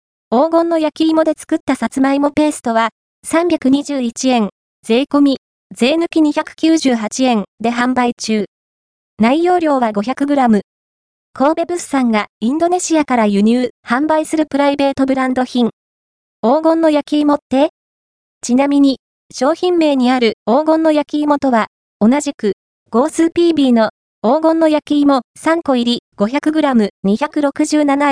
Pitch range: 230-300 Hz